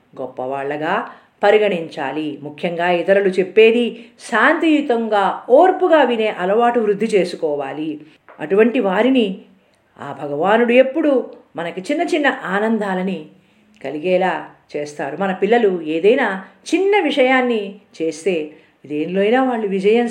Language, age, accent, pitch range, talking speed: Telugu, 50-69, native, 175-245 Hz, 95 wpm